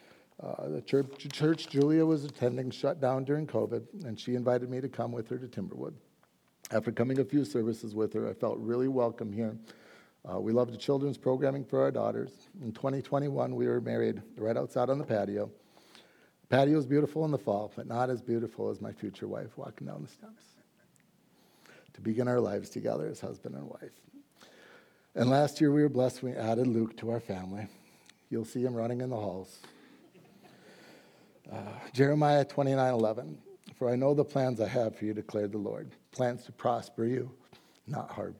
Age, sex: 50-69, male